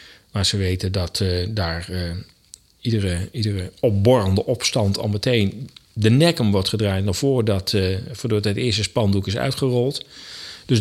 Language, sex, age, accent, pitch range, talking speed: Dutch, male, 40-59, Dutch, 100-135 Hz, 155 wpm